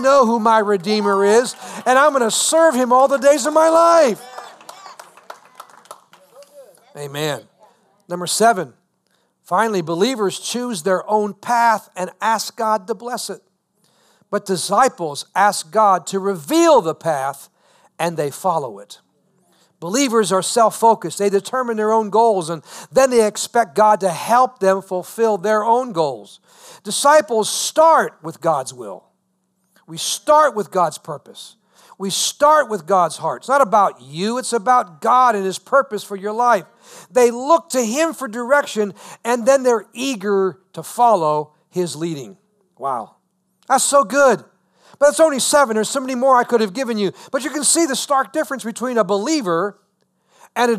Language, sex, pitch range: English, male, 195-260 Hz